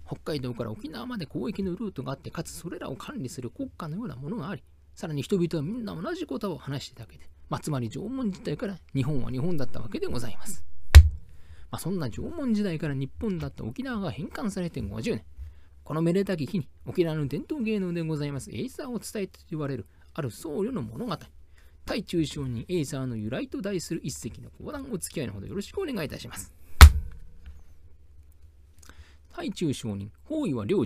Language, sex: Japanese, male